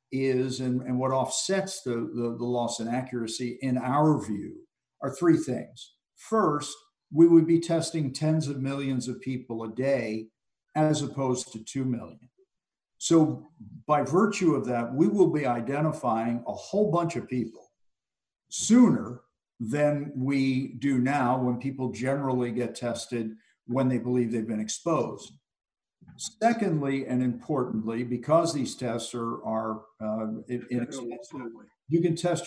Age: 50-69